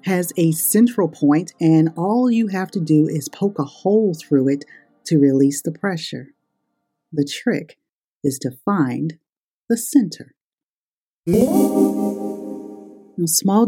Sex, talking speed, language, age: female, 125 wpm, English, 40-59